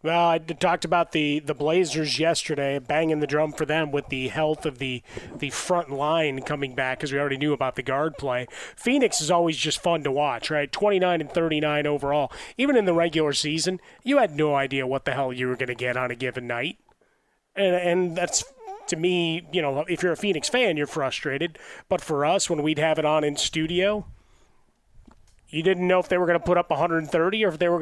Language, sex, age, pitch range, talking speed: English, male, 30-49, 145-170 Hz, 220 wpm